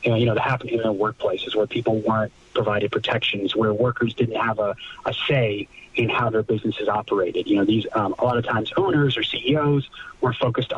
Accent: American